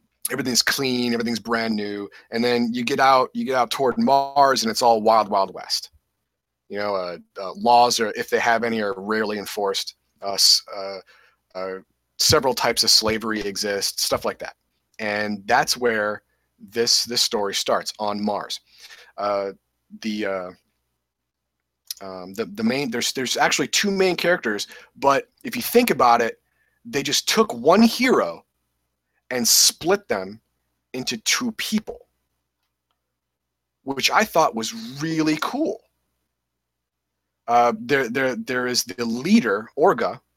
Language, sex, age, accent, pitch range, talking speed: English, male, 30-49, American, 95-135 Hz, 145 wpm